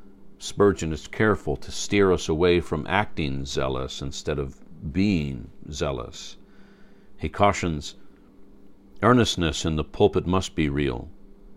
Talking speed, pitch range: 120 wpm, 80-100 Hz